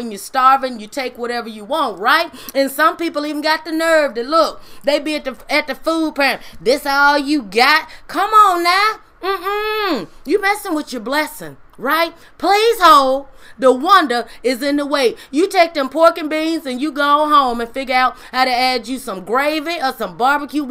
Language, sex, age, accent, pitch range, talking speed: English, female, 30-49, American, 260-335 Hz, 205 wpm